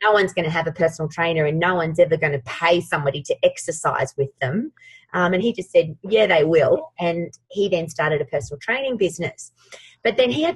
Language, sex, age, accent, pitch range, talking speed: English, female, 30-49, Australian, 165-225 Hz, 225 wpm